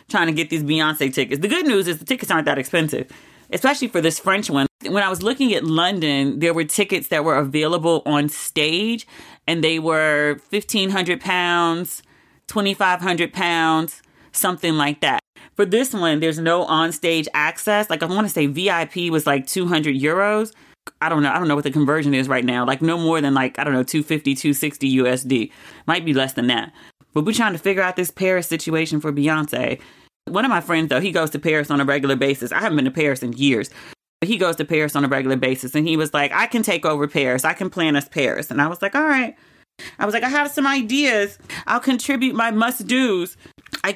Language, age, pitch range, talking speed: English, 30-49, 150-200 Hz, 225 wpm